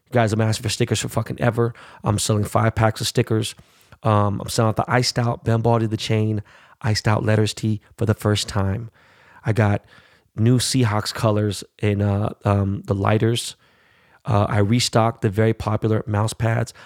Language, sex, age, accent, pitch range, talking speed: English, male, 30-49, American, 105-120 Hz, 180 wpm